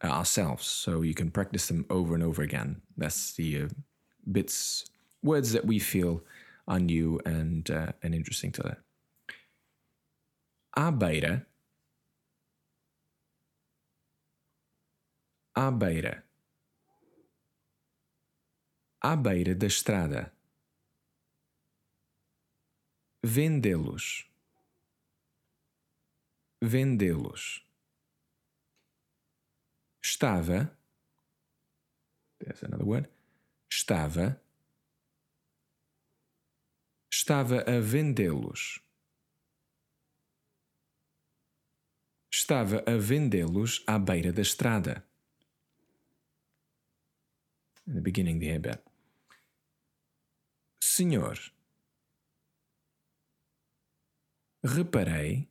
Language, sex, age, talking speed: English, male, 30-49, 65 wpm